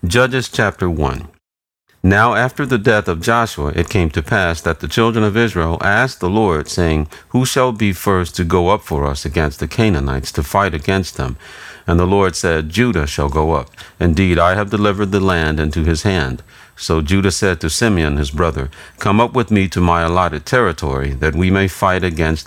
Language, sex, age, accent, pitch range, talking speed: English, male, 50-69, American, 75-100 Hz, 200 wpm